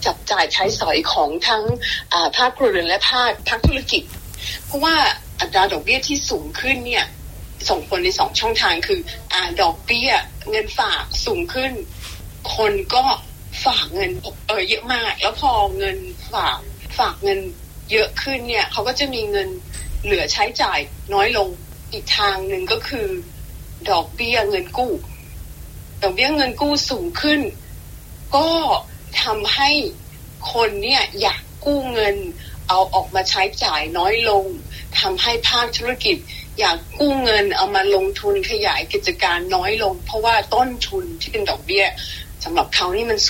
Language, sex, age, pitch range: Thai, female, 20-39, 245-400 Hz